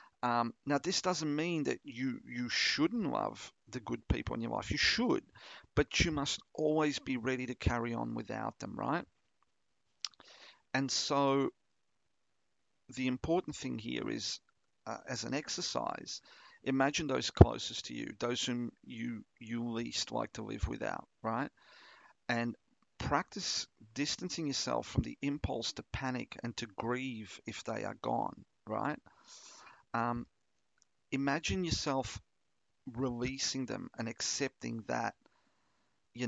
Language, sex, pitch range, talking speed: English, male, 120-145 Hz, 135 wpm